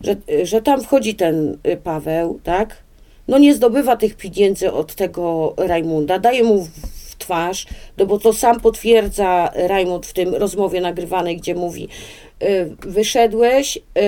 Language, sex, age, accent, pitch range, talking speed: Polish, female, 40-59, native, 175-225 Hz, 135 wpm